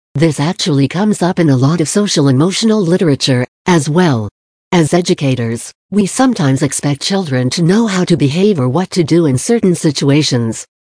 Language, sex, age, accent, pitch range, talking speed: English, female, 60-79, American, 135-180 Hz, 165 wpm